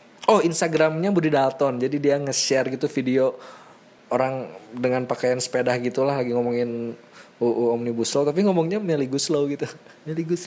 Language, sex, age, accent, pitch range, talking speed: Indonesian, male, 20-39, native, 145-235 Hz, 150 wpm